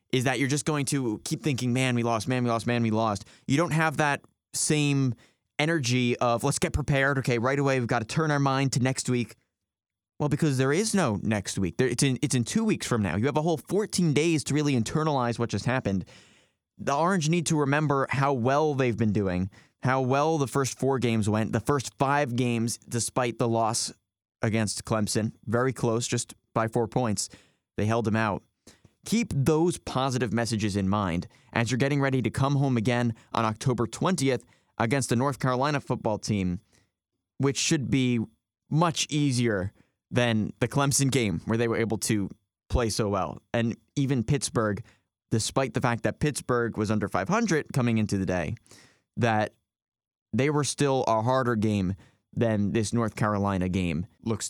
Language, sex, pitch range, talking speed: English, male, 110-140 Hz, 185 wpm